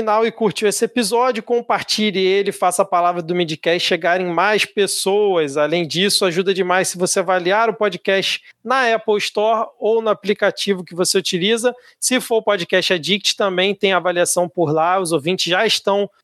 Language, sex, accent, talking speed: Portuguese, male, Brazilian, 175 wpm